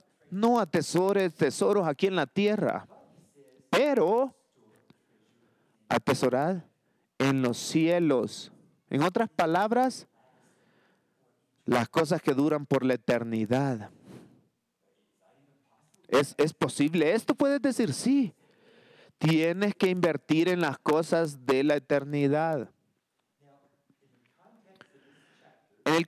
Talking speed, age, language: 90 wpm, 40-59, English